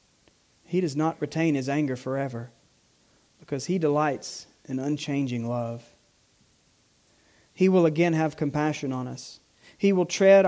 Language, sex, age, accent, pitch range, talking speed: English, male, 40-59, American, 125-160 Hz, 130 wpm